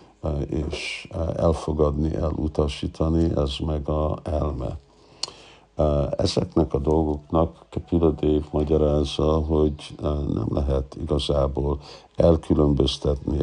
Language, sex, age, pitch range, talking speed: Hungarian, male, 60-79, 70-80 Hz, 80 wpm